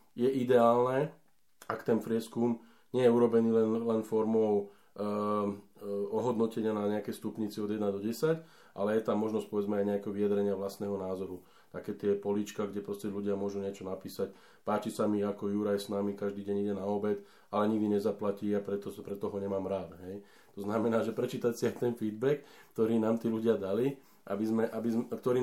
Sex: male